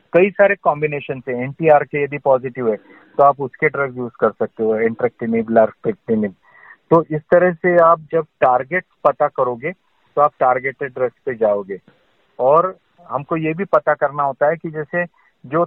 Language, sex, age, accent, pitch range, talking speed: Hindi, male, 40-59, native, 130-170 Hz, 170 wpm